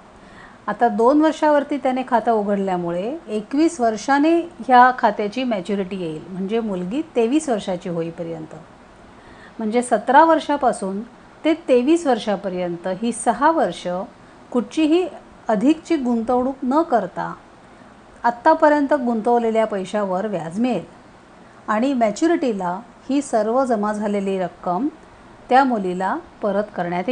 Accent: native